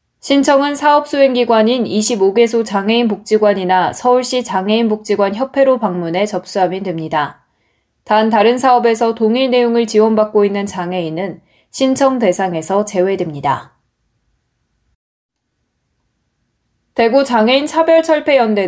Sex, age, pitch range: female, 20-39, 190-245 Hz